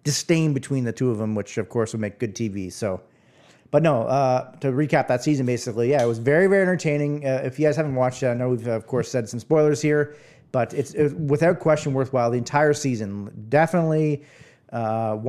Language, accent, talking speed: English, American, 220 wpm